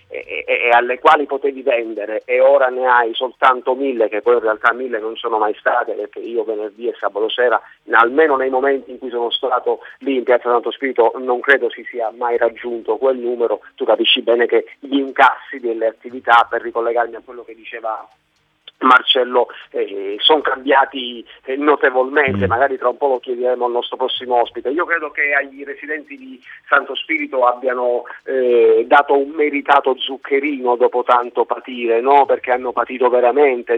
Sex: male